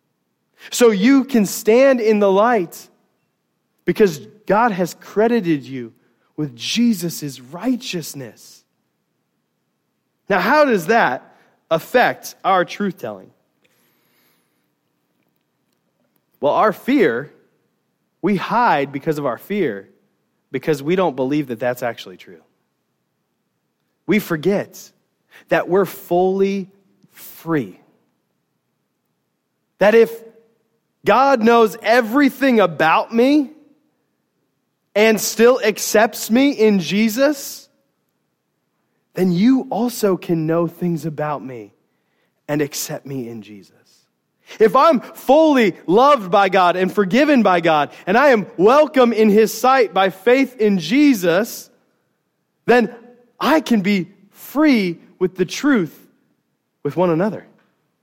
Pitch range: 160-240 Hz